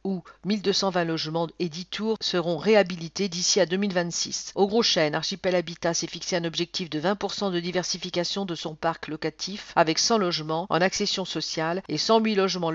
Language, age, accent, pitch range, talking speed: English, 50-69, French, 170-200 Hz, 175 wpm